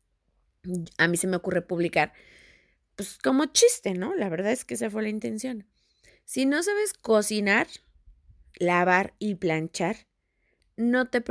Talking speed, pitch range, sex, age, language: 140 wpm, 195-270 Hz, female, 20-39, Spanish